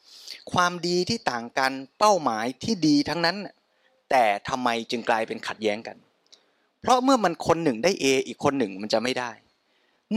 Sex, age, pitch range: male, 20-39, 125-180 Hz